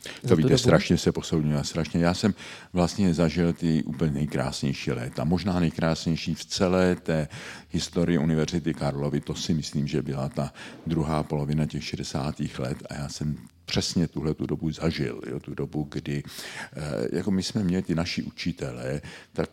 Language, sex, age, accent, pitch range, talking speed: Czech, male, 50-69, native, 70-85 Hz, 165 wpm